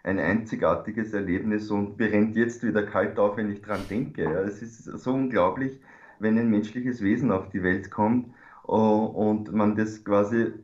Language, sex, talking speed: German, male, 165 wpm